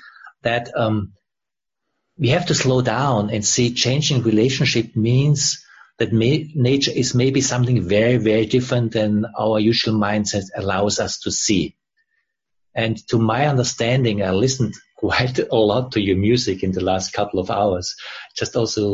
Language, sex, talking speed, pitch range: English, male, 150 wpm, 115-140 Hz